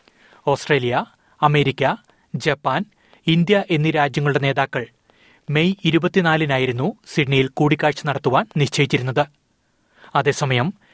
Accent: native